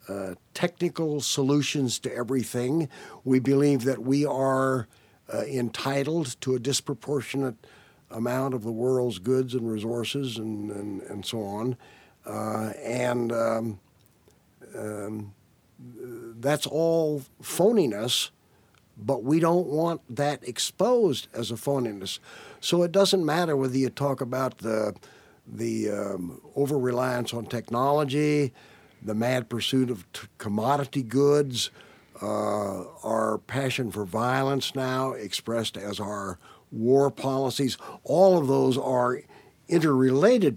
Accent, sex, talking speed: American, male, 115 wpm